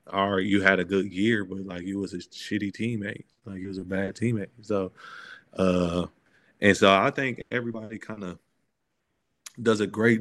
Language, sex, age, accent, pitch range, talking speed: English, male, 30-49, American, 90-100 Hz, 180 wpm